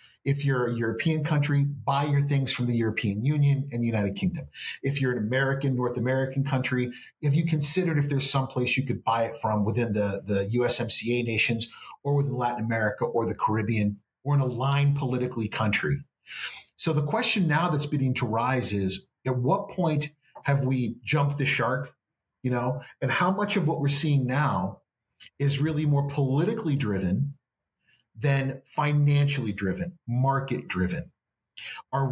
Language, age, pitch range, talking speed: English, 40-59, 115-140 Hz, 165 wpm